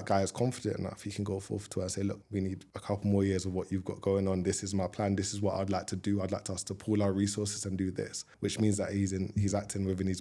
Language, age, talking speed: English, 20-39, 330 wpm